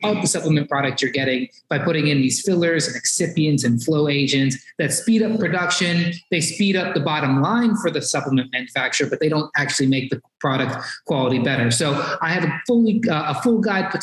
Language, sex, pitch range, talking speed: English, male, 140-180 Hz, 205 wpm